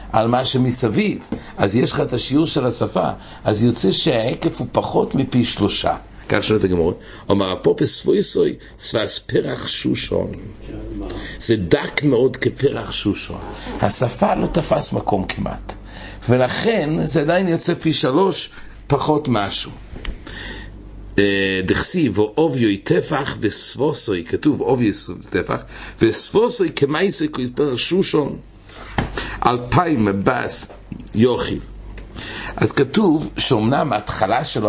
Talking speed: 95 wpm